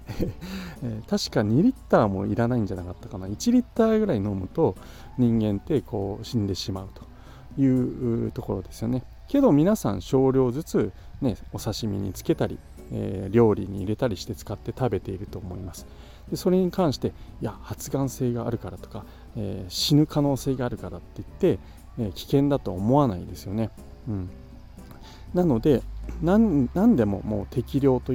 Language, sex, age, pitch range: Japanese, male, 40-59, 100-140 Hz